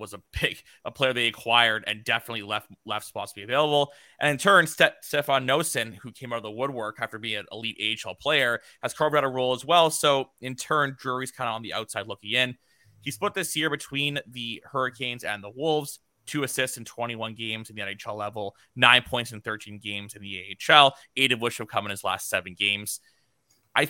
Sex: male